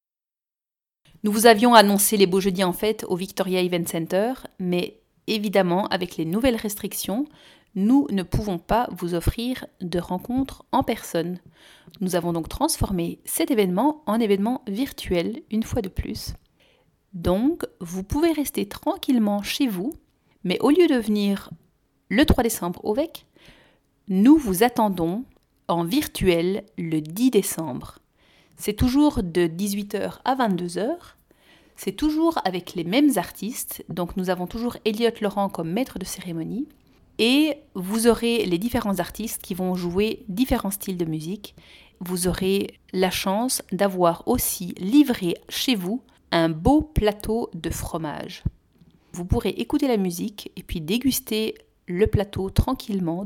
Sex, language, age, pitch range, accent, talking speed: female, French, 40-59, 180-240 Hz, French, 145 wpm